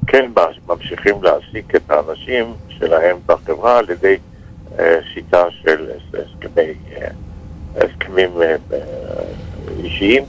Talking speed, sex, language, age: 75 wpm, male, Hebrew, 60-79